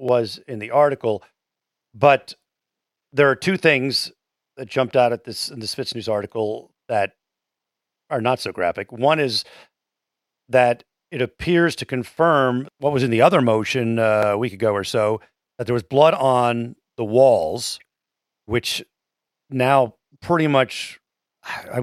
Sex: male